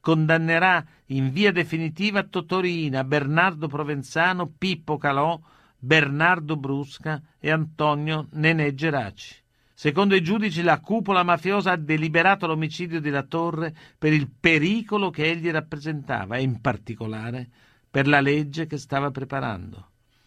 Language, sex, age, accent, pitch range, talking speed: Italian, male, 50-69, native, 135-175 Hz, 120 wpm